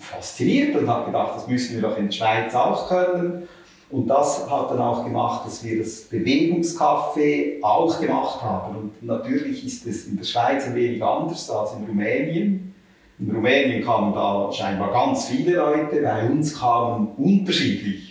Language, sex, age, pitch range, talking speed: German, male, 40-59, 115-175 Hz, 170 wpm